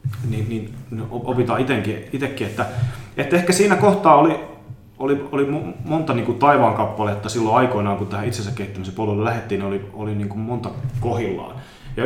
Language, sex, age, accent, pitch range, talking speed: Finnish, male, 30-49, native, 105-130 Hz, 145 wpm